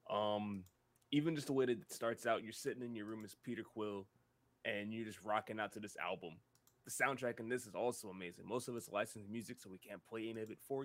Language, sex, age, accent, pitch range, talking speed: English, male, 20-39, American, 110-130 Hz, 250 wpm